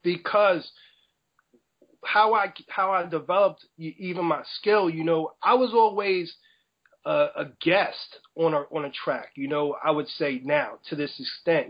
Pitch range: 160-195 Hz